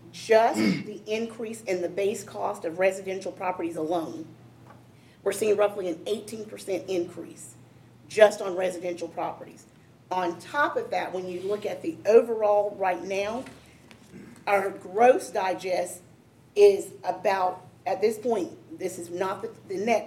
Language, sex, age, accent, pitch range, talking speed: English, female, 40-59, American, 175-215 Hz, 140 wpm